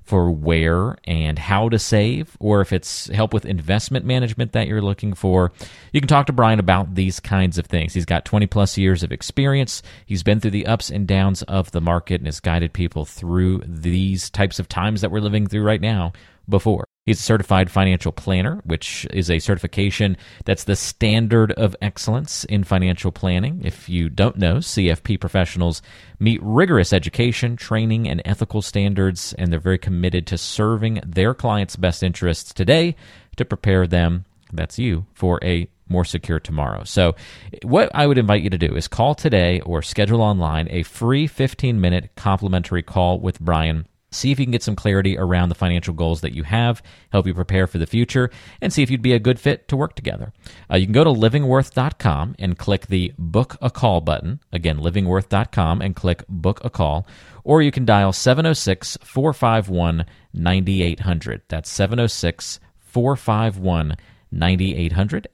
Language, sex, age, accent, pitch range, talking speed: English, male, 40-59, American, 85-110 Hz, 175 wpm